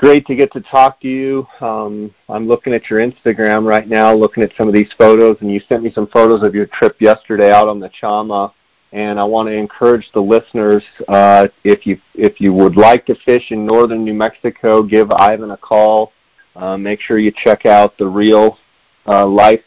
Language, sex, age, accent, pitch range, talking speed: English, male, 40-59, American, 105-110 Hz, 205 wpm